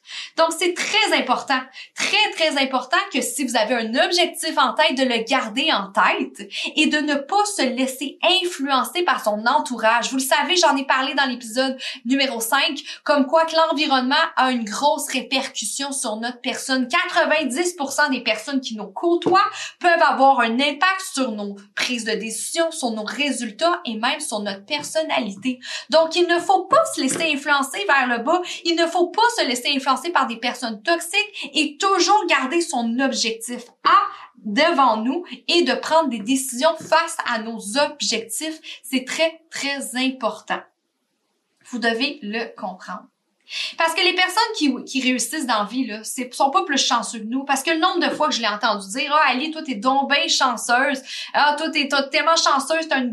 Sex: female